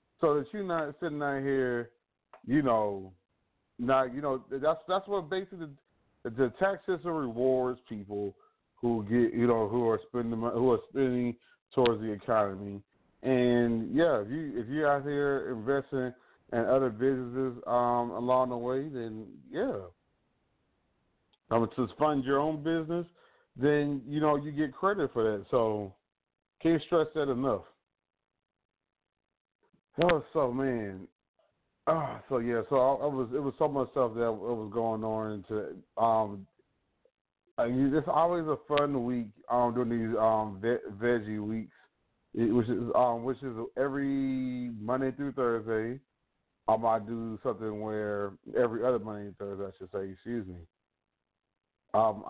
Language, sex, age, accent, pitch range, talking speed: English, male, 30-49, American, 110-135 Hz, 155 wpm